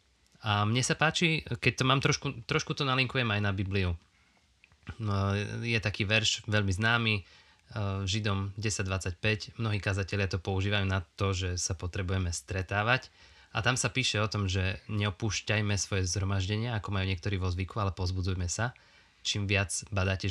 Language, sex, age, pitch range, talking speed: Slovak, male, 20-39, 95-115 Hz, 155 wpm